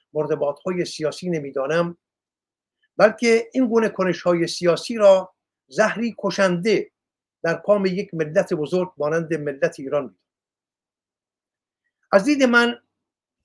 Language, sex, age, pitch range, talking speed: Persian, male, 50-69, 170-220 Hz, 105 wpm